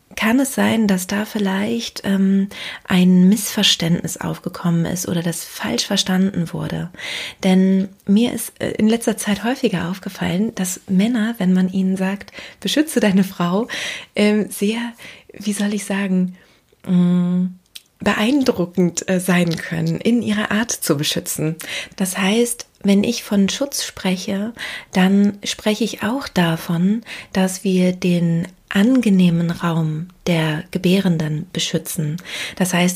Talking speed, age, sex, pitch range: 125 wpm, 30-49, female, 180-210 Hz